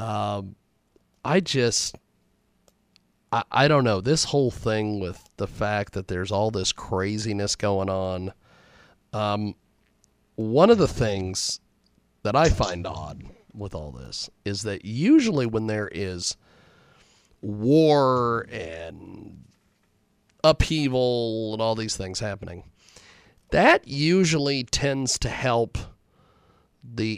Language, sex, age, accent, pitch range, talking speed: English, male, 40-59, American, 100-115 Hz, 115 wpm